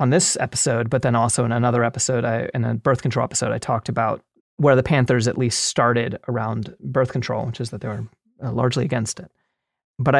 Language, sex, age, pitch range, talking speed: English, male, 30-49, 115-140 Hz, 210 wpm